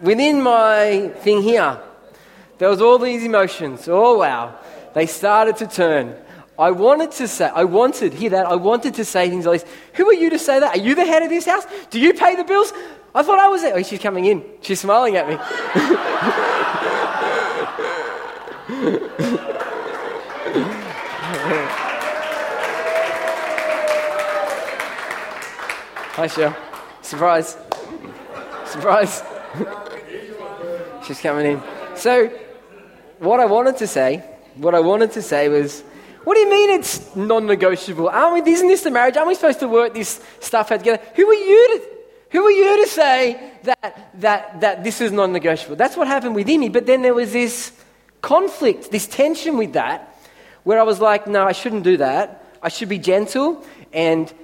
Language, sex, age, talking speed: English, male, 20-39, 160 wpm